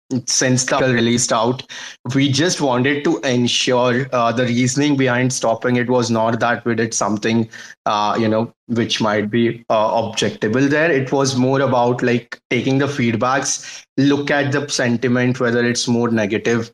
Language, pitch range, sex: English, 115-135 Hz, male